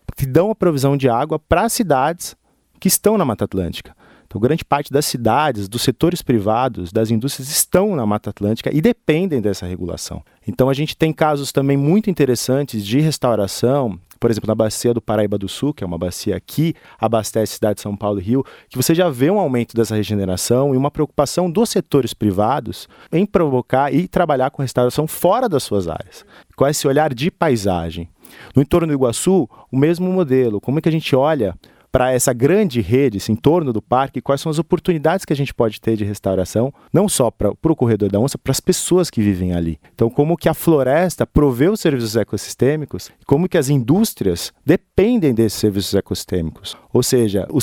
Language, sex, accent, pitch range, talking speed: Portuguese, male, Brazilian, 110-155 Hz, 200 wpm